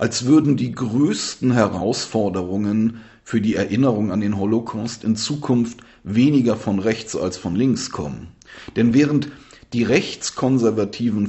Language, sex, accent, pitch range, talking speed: German, male, German, 100-125 Hz, 130 wpm